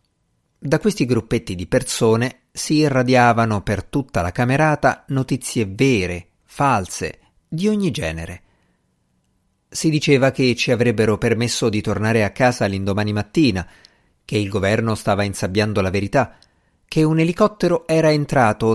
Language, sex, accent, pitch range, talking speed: Italian, male, native, 100-135 Hz, 130 wpm